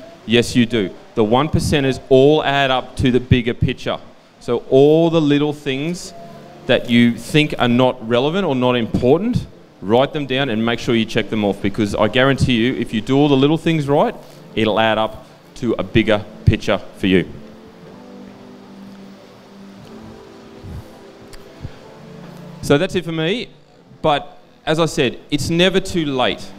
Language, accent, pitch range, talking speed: English, Australian, 125-160 Hz, 160 wpm